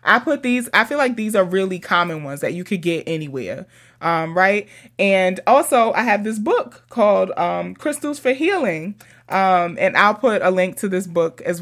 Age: 20-39